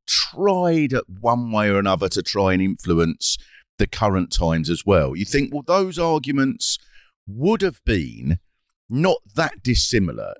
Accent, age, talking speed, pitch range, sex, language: British, 50-69, 150 wpm, 90-110 Hz, male, English